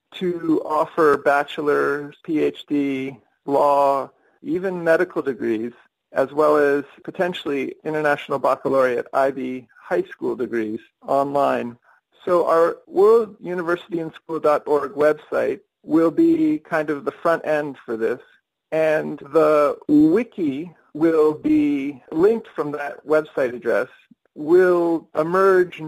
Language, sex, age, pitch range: English, male, 40-59, 145-190 Hz